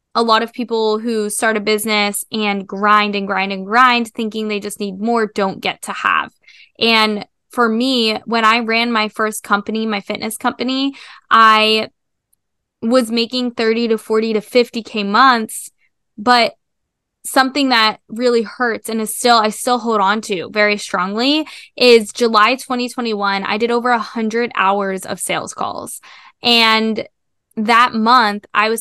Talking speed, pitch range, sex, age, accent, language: 160 wpm, 210-240 Hz, female, 10-29, American, English